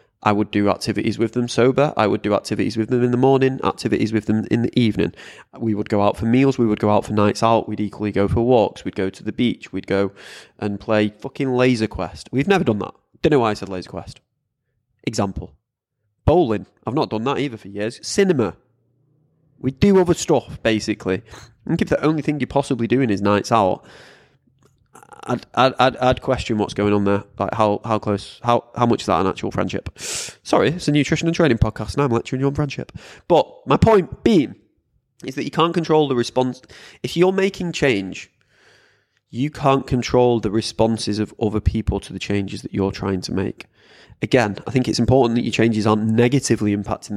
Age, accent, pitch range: 20-39, British, 105-130 Hz